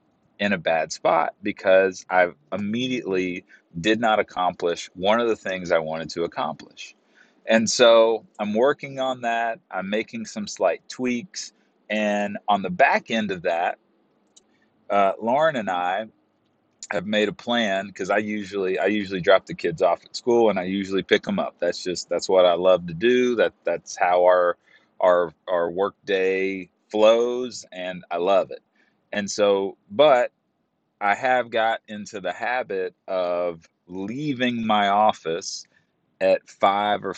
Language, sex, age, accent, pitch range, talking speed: English, male, 30-49, American, 90-115 Hz, 155 wpm